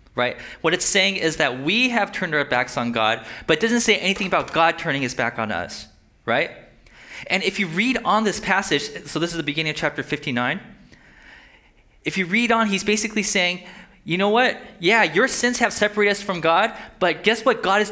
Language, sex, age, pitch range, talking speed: English, male, 20-39, 170-220 Hz, 215 wpm